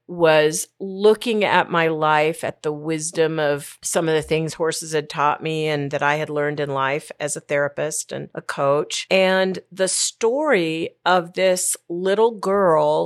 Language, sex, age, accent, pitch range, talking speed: English, female, 40-59, American, 155-185 Hz, 170 wpm